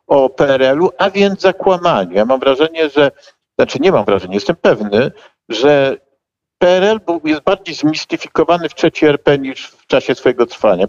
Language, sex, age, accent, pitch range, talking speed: Polish, male, 50-69, native, 105-165 Hz, 155 wpm